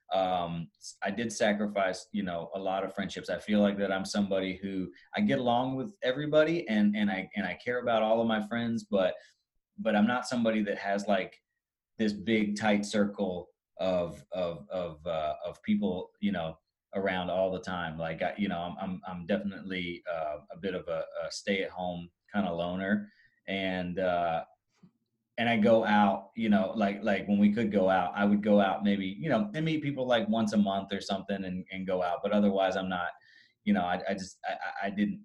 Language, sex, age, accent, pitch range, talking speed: English, male, 30-49, American, 95-115 Hz, 205 wpm